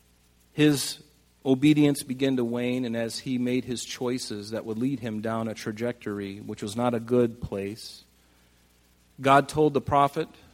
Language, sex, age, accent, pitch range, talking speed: English, male, 40-59, American, 110-140 Hz, 160 wpm